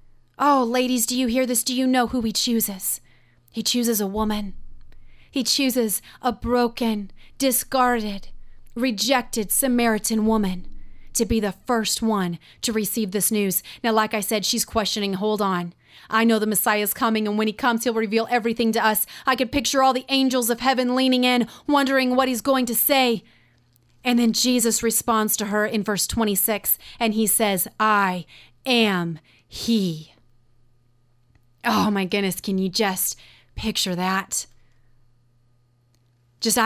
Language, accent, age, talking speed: English, American, 30-49, 155 wpm